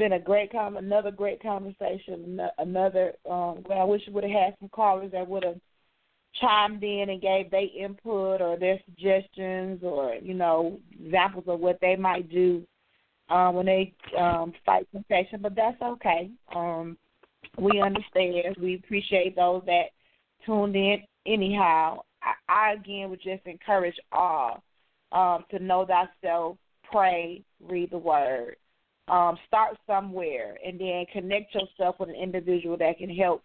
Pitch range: 170-195 Hz